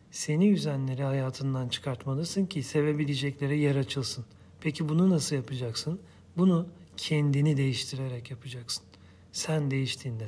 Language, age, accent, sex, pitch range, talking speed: Turkish, 40-59, native, male, 130-155 Hz, 105 wpm